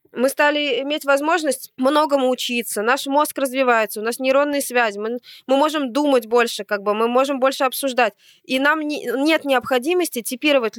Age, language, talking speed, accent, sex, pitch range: 20-39, Russian, 160 wpm, native, female, 215-275 Hz